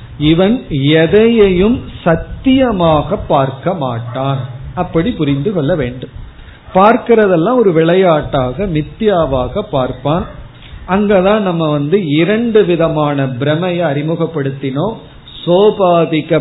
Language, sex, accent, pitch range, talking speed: Tamil, male, native, 145-200 Hz, 80 wpm